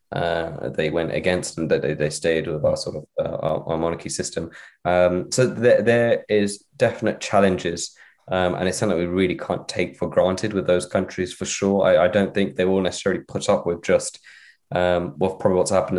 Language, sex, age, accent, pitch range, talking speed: English, male, 20-39, British, 85-95 Hz, 205 wpm